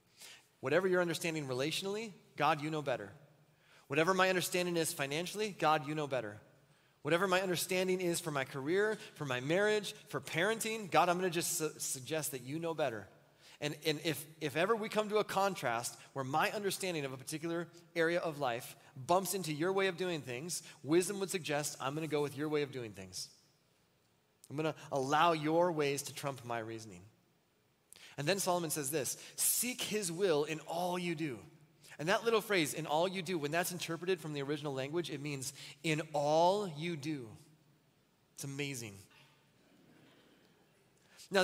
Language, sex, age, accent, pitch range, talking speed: English, male, 30-49, American, 145-180 Hz, 180 wpm